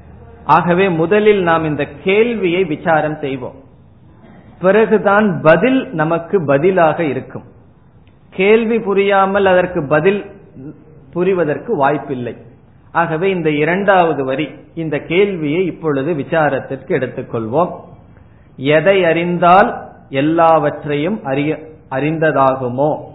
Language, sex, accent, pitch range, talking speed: Tamil, male, native, 145-190 Hz, 65 wpm